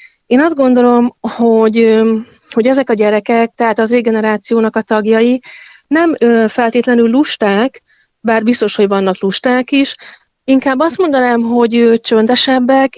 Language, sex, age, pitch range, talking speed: Hungarian, female, 30-49, 215-245 Hz, 125 wpm